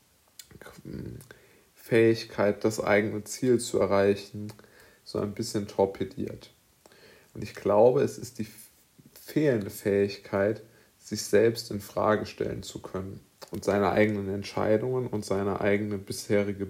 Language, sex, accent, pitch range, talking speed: German, male, German, 100-110 Hz, 120 wpm